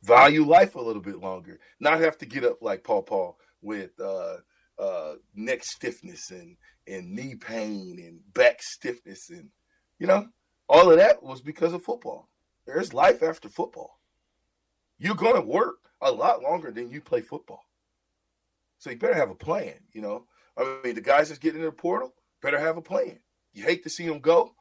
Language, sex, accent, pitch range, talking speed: English, male, American, 120-190 Hz, 185 wpm